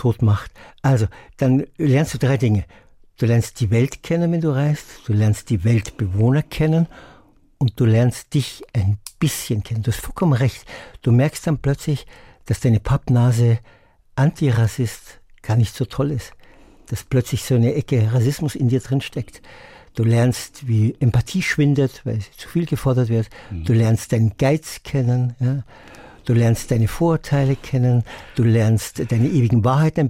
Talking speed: 165 wpm